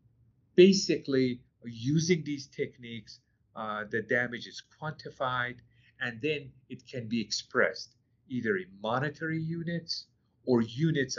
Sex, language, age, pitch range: male, English, 50-69, 115-145 Hz